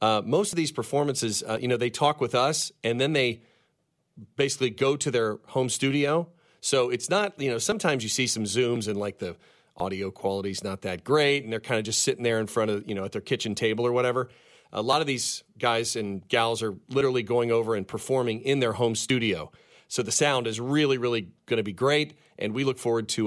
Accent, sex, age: American, male, 40-59